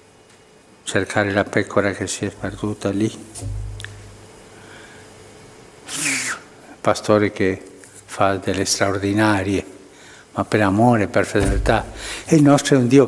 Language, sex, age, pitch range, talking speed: Italian, male, 60-79, 100-130 Hz, 110 wpm